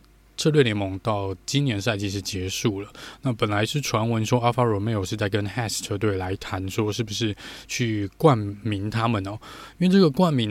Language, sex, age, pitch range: Chinese, male, 20-39, 100-125 Hz